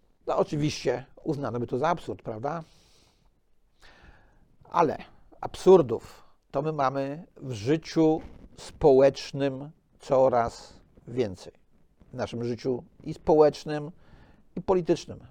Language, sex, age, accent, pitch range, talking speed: Polish, male, 50-69, native, 135-185 Hz, 100 wpm